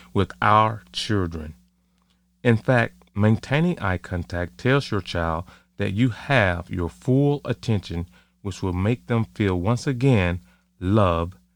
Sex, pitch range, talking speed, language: male, 85-110 Hz, 130 wpm, English